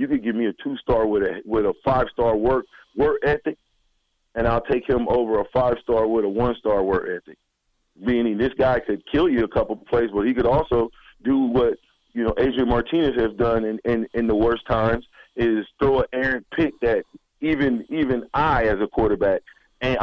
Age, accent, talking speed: 40-59, American, 200 wpm